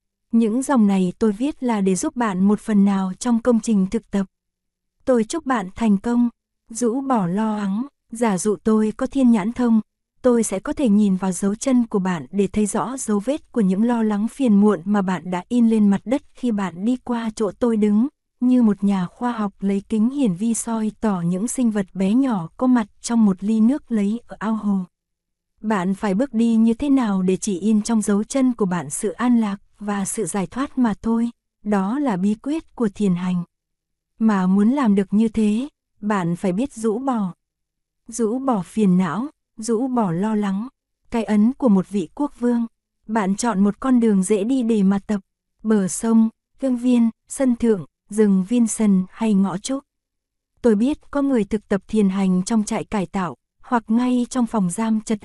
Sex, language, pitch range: female, Korean, 200-240 Hz